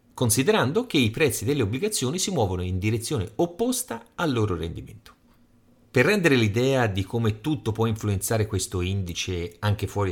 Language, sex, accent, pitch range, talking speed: Italian, male, native, 95-135 Hz, 155 wpm